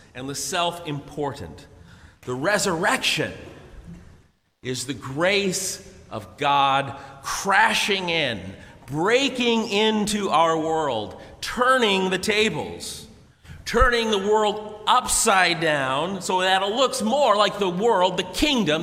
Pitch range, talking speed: 135-210 Hz, 110 wpm